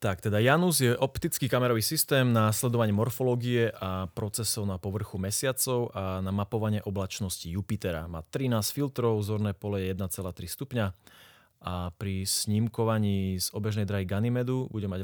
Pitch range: 100-120 Hz